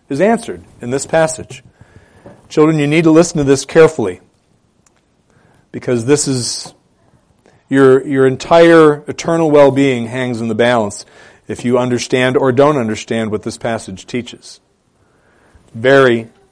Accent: American